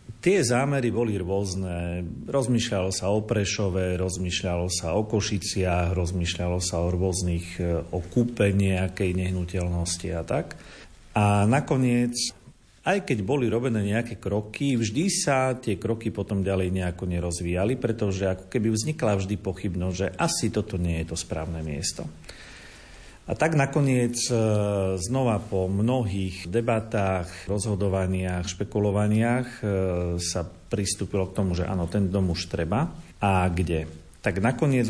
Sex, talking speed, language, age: male, 130 wpm, Slovak, 40-59